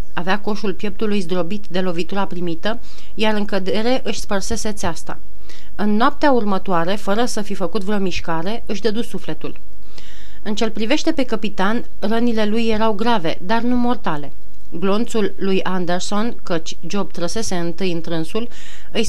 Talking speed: 145 wpm